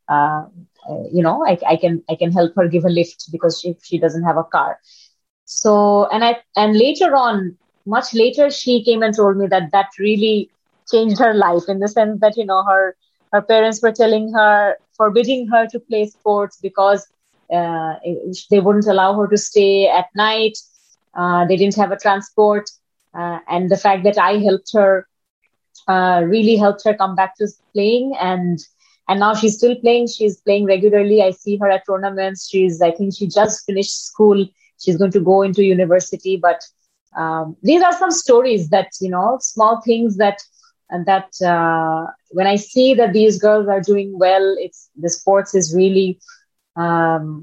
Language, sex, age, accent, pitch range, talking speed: English, female, 20-39, Indian, 180-215 Hz, 185 wpm